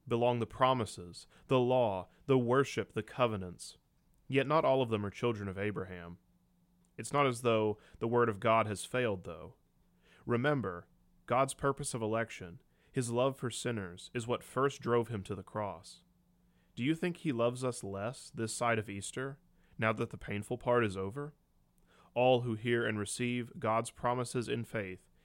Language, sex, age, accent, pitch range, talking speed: English, male, 30-49, American, 100-130 Hz, 175 wpm